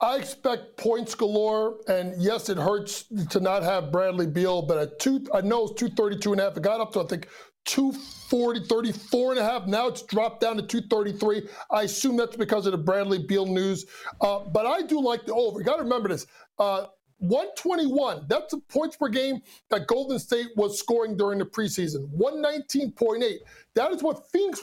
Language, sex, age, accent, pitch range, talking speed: English, male, 50-69, American, 205-275 Hz, 185 wpm